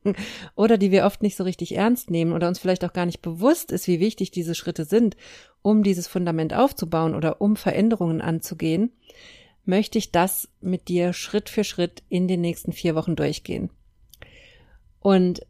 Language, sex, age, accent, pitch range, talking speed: German, female, 50-69, German, 170-190 Hz, 175 wpm